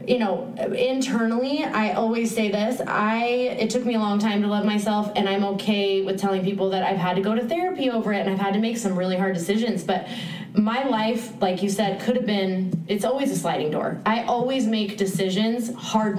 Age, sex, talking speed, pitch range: 20-39, female, 220 wpm, 195-230 Hz